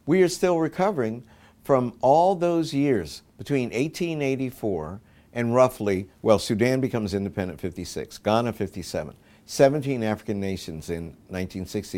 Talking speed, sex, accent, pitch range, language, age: 120 wpm, male, American, 95-130 Hz, English, 60-79